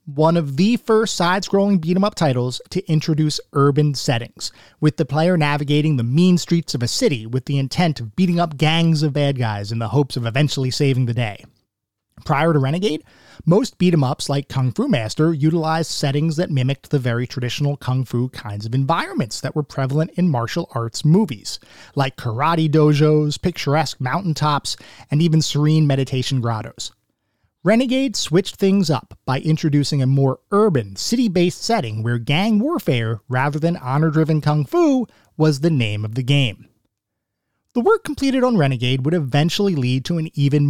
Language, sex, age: English, male, 30-49